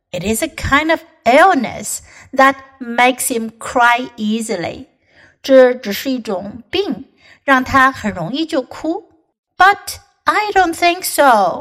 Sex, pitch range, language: female, 220-310 Hz, Chinese